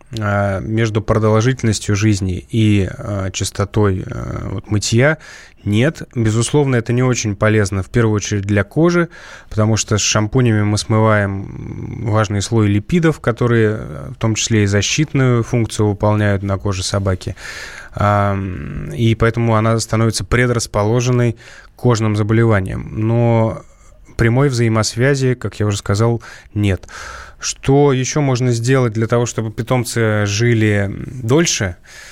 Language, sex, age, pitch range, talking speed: Russian, male, 20-39, 105-120 Hz, 120 wpm